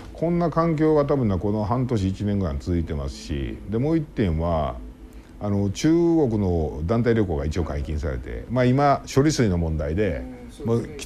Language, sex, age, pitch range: Japanese, male, 50-69, 85-125 Hz